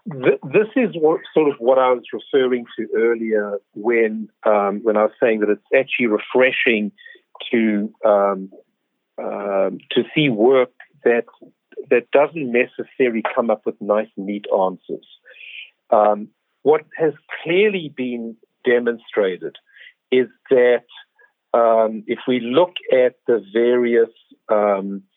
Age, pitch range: 50-69, 105-150 Hz